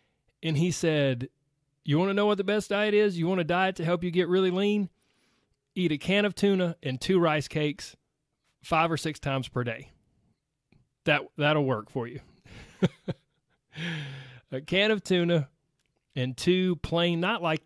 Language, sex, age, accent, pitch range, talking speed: English, male, 30-49, American, 125-175 Hz, 175 wpm